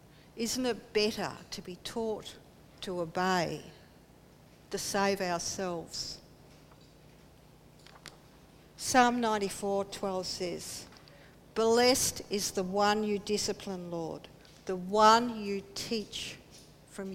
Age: 60-79